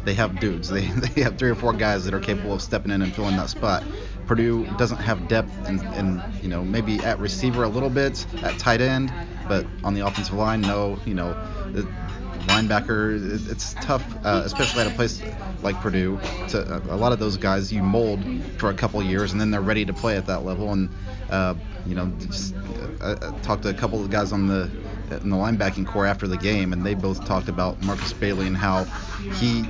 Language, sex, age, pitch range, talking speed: English, male, 20-39, 95-110 Hz, 225 wpm